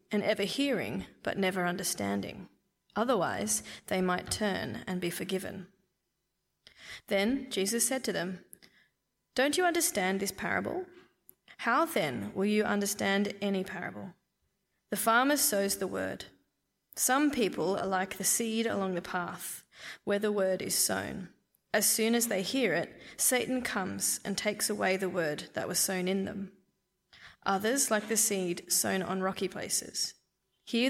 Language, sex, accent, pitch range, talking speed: English, female, Australian, 190-220 Hz, 150 wpm